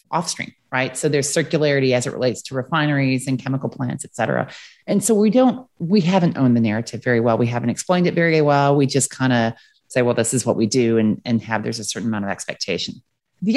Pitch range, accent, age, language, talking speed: 125-180 Hz, American, 30-49, English, 235 wpm